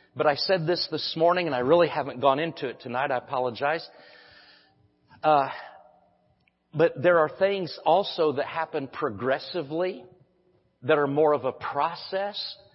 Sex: male